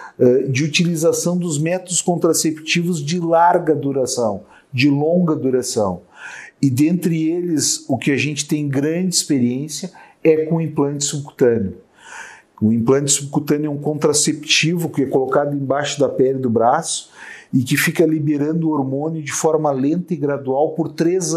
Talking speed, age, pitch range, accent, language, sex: 150 wpm, 40-59, 135-170 Hz, Brazilian, Portuguese, male